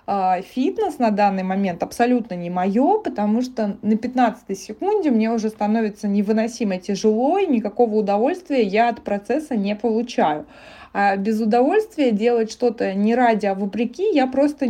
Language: Russian